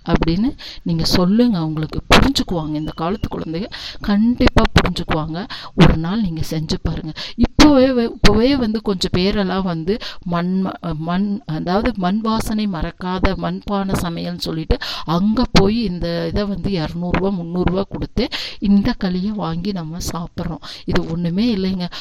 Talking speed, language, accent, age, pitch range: 125 wpm, Tamil, native, 50-69, 170-220 Hz